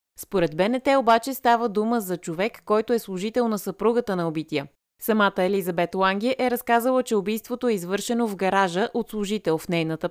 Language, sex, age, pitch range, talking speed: Bulgarian, female, 30-49, 175-235 Hz, 170 wpm